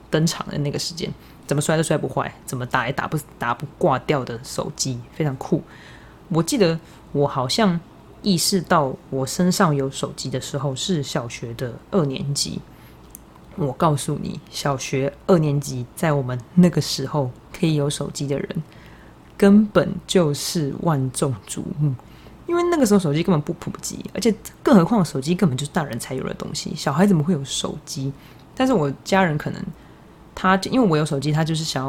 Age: 20-39